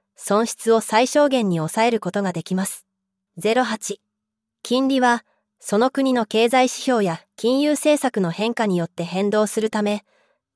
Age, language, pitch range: 20-39, Japanese, 195-255 Hz